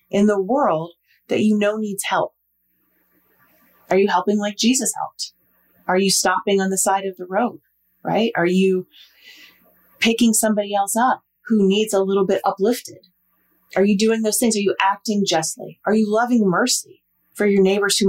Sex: female